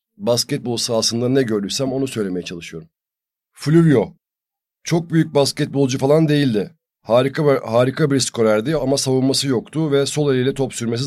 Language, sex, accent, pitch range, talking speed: Turkish, male, native, 115-140 Hz, 140 wpm